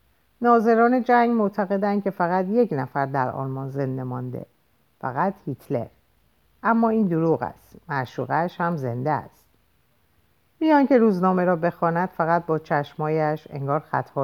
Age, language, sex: 50-69, Persian, female